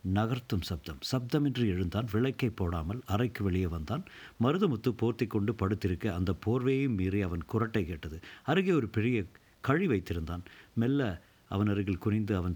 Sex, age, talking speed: male, 50-69, 135 wpm